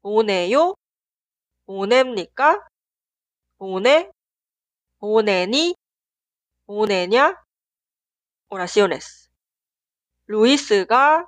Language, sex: Korean, female